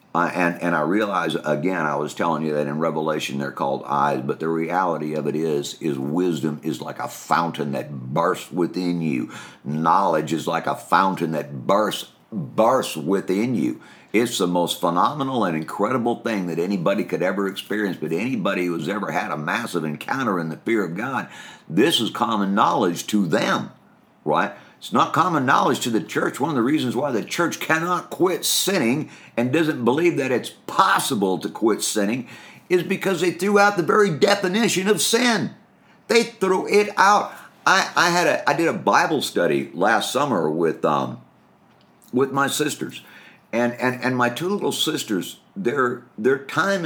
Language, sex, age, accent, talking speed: English, male, 50-69, American, 180 wpm